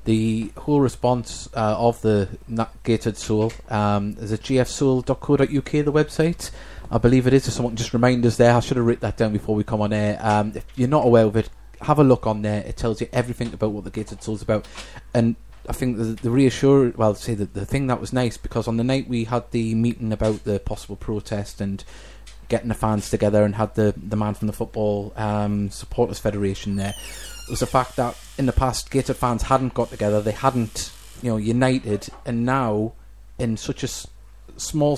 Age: 20-39